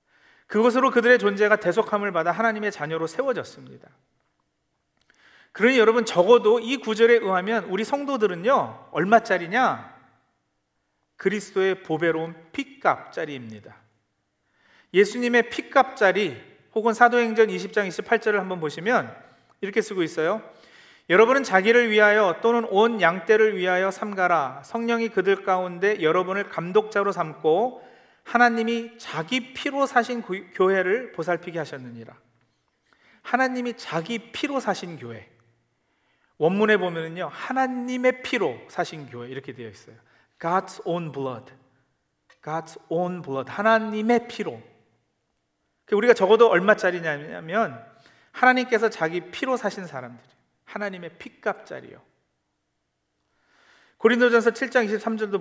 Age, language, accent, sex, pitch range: 40-59, Korean, native, male, 160-230 Hz